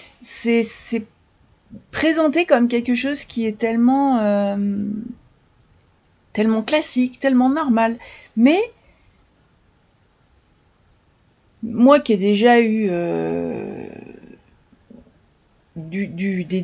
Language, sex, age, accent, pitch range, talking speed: French, female, 40-59, French, 200-250 Hz, 85 wpm